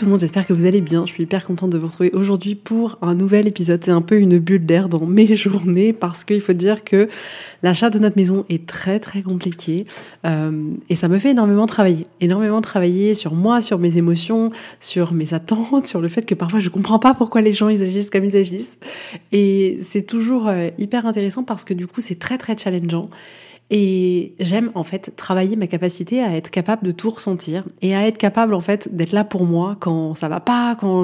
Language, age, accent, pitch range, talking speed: French, 30-49, French, 180-220 Hz, 230 wpm